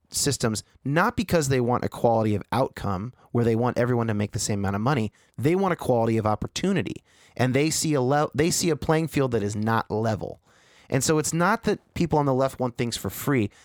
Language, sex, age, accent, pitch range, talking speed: English, male, 30-49, American, 105-140 Hz, 235 wpm